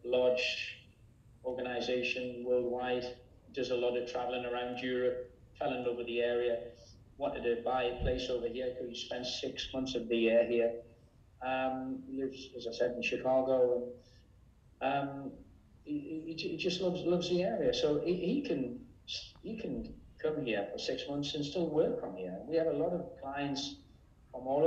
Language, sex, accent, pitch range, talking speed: English, male, British, 120-135 Hz, 180 wpm